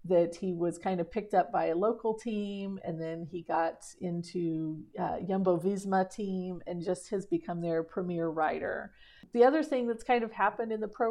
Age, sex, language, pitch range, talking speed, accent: 40-59, female, English, 180-215 Hz, 195 wpm, American